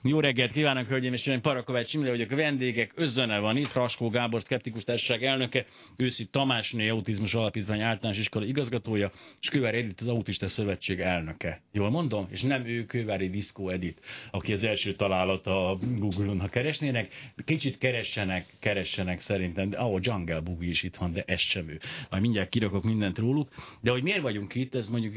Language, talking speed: Hungarian, 180 wpm